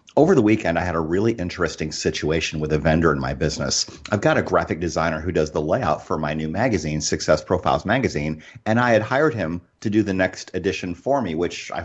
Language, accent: English, American